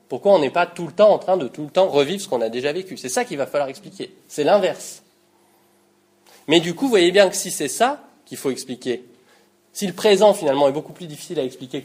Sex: male